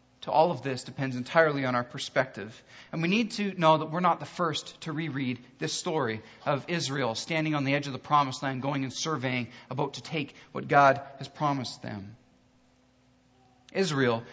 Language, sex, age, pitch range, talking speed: English, male, 40-59, 125-155 Hz, 185 wpm